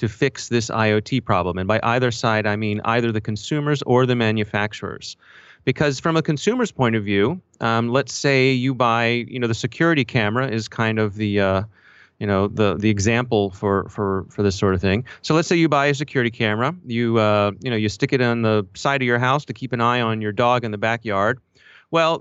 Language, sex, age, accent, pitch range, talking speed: English, male, 30-49, American, 110-160 Hz, 225 wpm